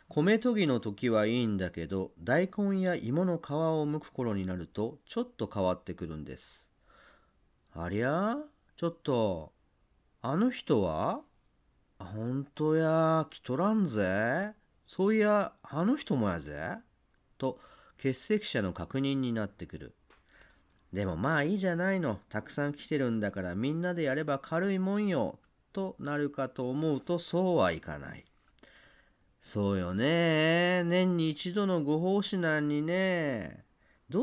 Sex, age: male, 40-59